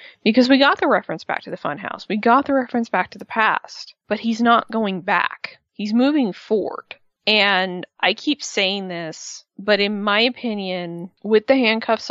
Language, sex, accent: English, female, American